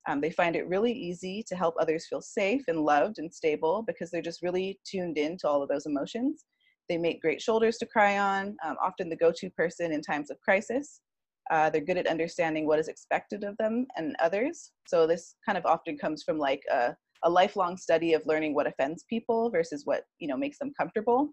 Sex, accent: female, American